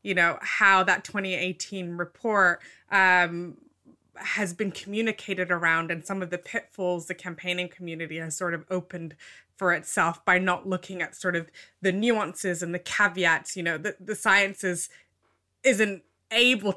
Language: English